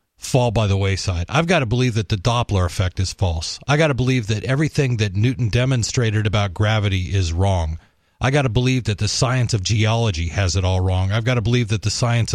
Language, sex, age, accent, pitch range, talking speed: English, male, 40-59, American, 105-135 Hz, 230 wpm